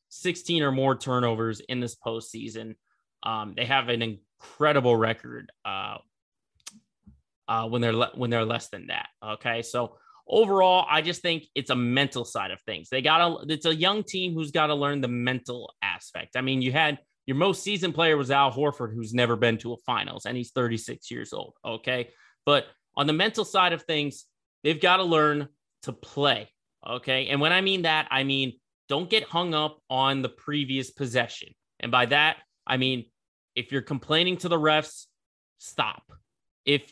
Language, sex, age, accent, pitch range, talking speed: English, male, 30-49, American, 120-155 Hz, 185 wpm